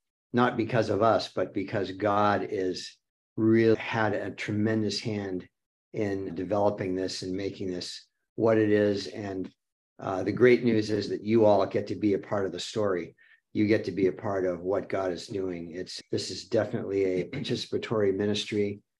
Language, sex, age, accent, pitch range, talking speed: English, male, 50-69, American, 95-110 Hz, 180 wpm